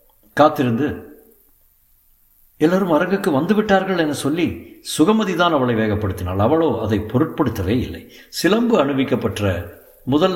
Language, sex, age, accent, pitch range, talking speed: Tamil, male, 60-79, native, 105-150 Hz, 95 wpm